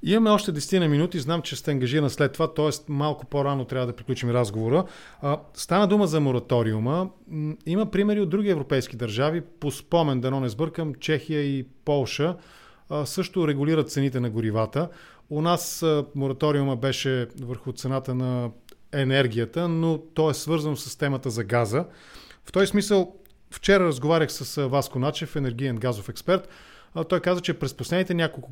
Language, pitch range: English, 125-160 Hz